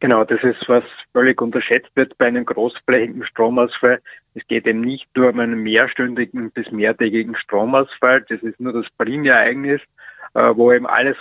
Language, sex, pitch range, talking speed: German, male, 115-130 Hz, 160 wpm